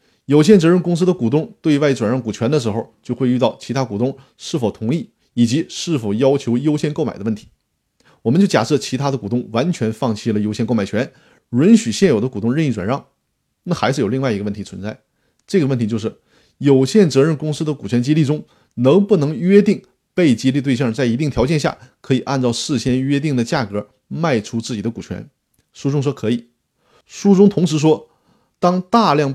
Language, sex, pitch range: Chinese, male, 115-150 Hz